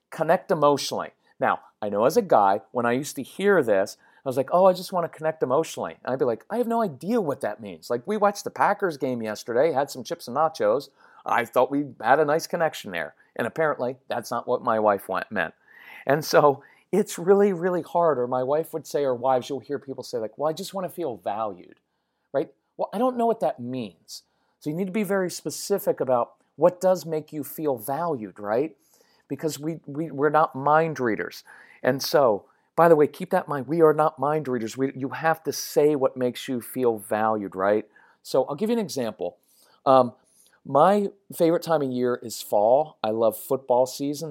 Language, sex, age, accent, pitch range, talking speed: English, male, 40-59, American, 120-170 Hz, 220 wpm